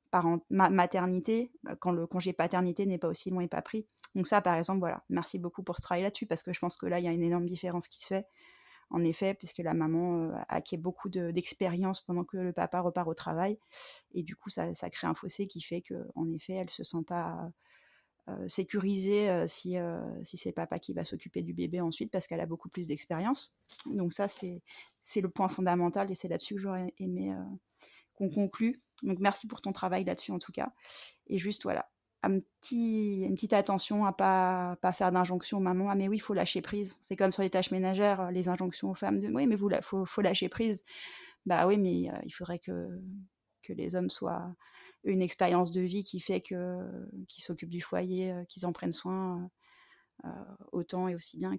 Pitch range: 175-200 Hz